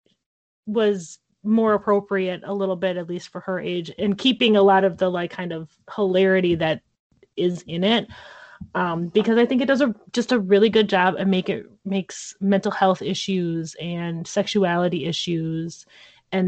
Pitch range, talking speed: 175-205 Hz, 175 wpm